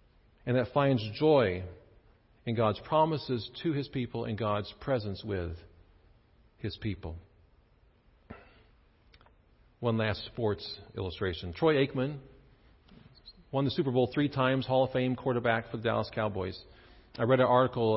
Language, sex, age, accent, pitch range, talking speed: English, male, 40-59, American, 100-130 Hz, 135 wpm